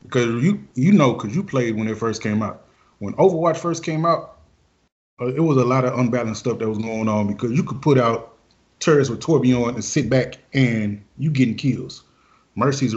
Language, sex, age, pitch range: English, male, 30-49, 110-135 Hz